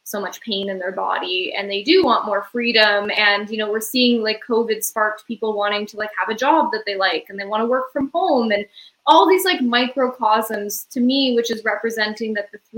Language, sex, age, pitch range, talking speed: English, female, 10-29, 205-250 Hz, 225 wpm